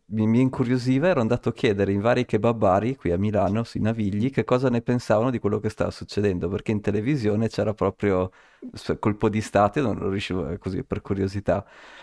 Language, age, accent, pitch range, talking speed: Italian, 30-49, native, 95-115 Hz, 185 wpm